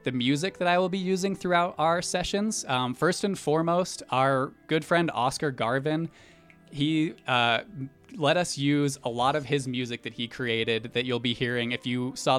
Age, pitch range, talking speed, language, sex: 20-39, 120-145 Hz, 190 wpm, English, male